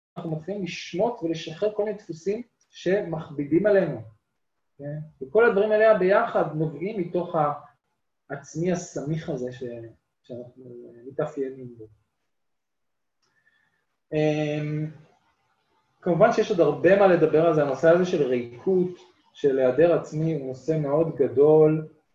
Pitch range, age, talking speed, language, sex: 135-175 Hz, 20-39, 115 wpm, Hebrew, male